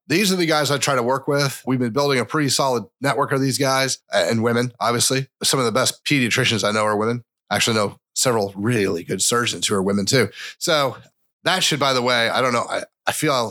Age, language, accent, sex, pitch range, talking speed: 30-49, English, American, male, 115-140 Hz, 240 wpm